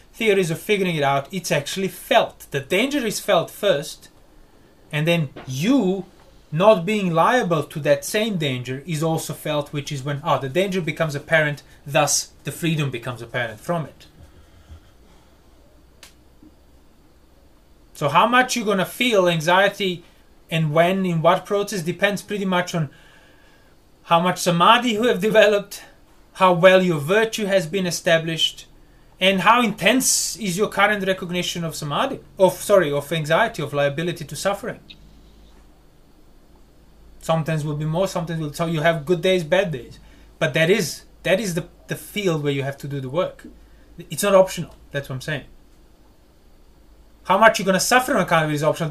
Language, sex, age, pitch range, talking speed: English, male, 30-49, 145-190 Hz, 160 wpm